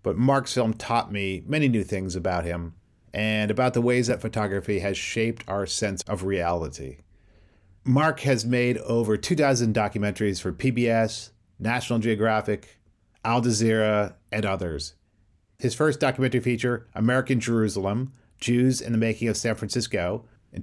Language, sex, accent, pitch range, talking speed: English, male, American, 100-120 Hz, 145 wpm